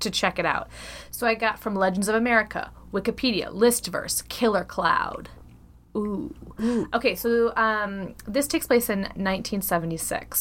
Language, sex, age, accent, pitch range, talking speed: English, female, 20-39, American, 165-210 Hz, 140 wpm